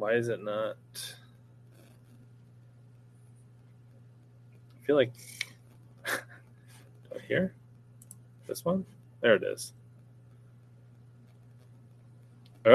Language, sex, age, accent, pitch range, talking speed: English, male, 20-39, American, 120-130 Hz, 70 wpm